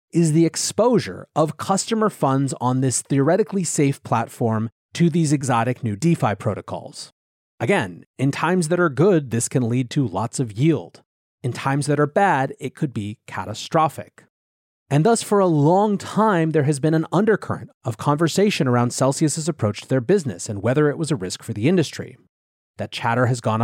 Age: 30-49